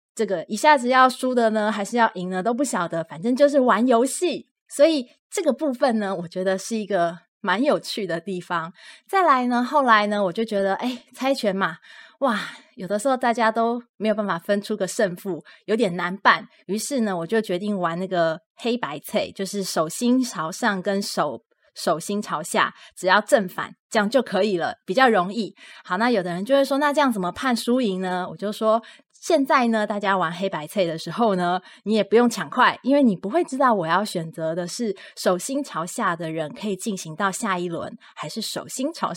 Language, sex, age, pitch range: Chinese, female, 20-39, 180-230 Hz